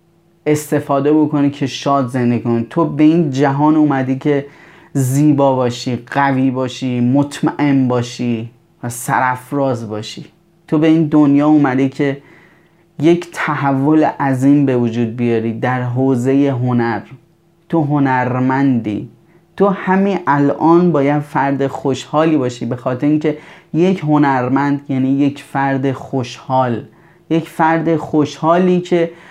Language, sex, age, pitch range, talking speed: Persian, male, 30-49, 130-160 Hz, 120 wpm